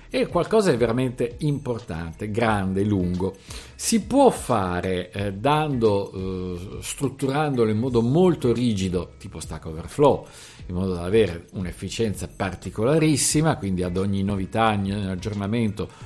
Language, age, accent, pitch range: Italian, 50-69, native, 95-150 Hz